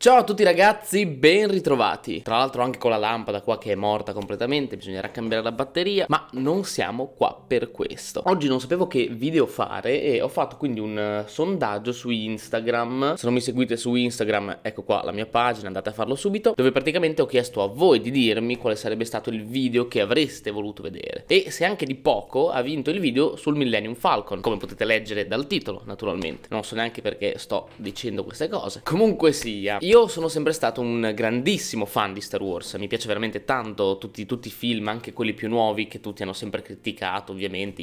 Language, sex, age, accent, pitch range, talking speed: Italian, male, 20-39, native, 105-135 Hz, 205 wpm